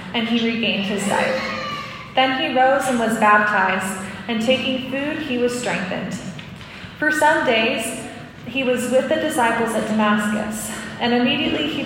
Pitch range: 205-245 Hz